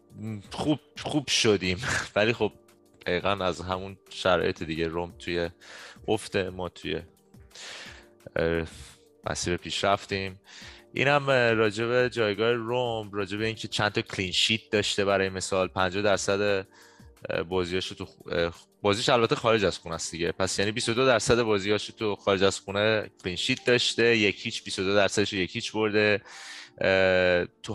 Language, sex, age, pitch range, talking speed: Persian, male, 20-39, 95-115 Hz, 130 wpm